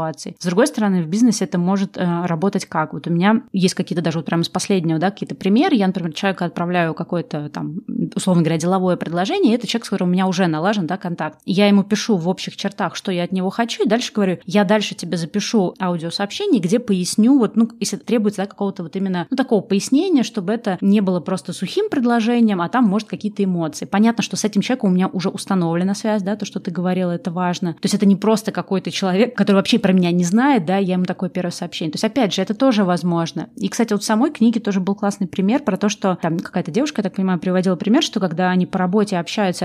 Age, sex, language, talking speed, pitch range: 20-39, female, Russian, 240 wpm, 180-215 Hz